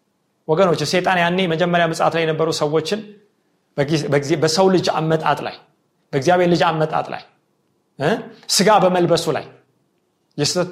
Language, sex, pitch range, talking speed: Amharic, male, 150-205 Hz, 120 wpm